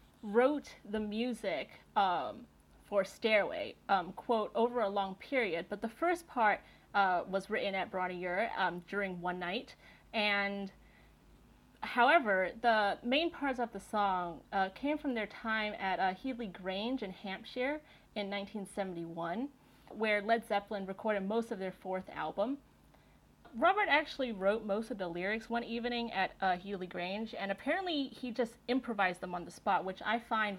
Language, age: English, 30-49